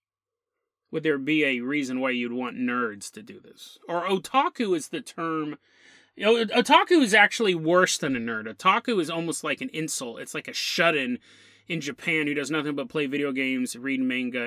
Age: 30-49